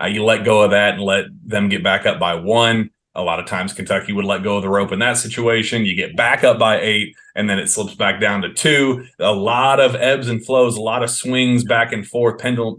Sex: male